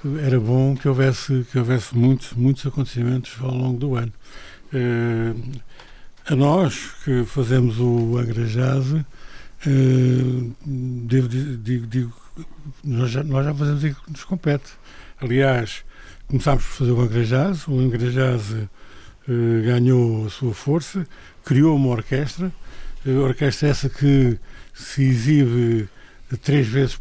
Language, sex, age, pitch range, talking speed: Portuguese, male, 60-79, 120-135 Hz, 120 wpm